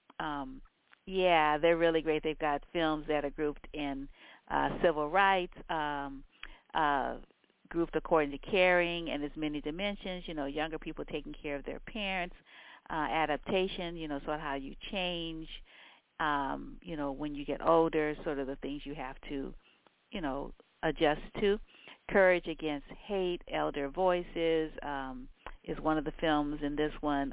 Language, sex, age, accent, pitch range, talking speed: English, female, 50-69, American, 145-180 Hz, 165 wpm